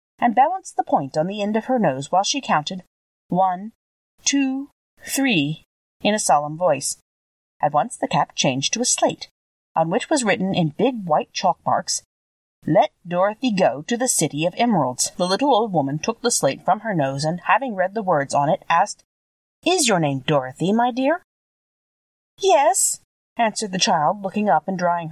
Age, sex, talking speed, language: 40-59, female, 185 wpm, English